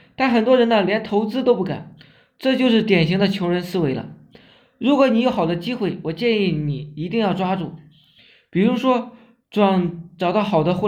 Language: Chinese